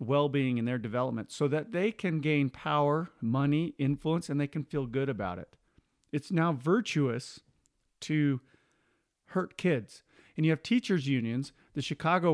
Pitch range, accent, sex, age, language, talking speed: 125-160 Hz, American, male, 40-59, English, 155 wpm